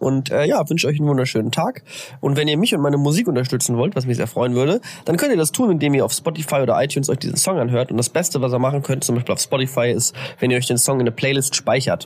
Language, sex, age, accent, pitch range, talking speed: German, male, 20-39, German, 125-160 Hz, 290 wpm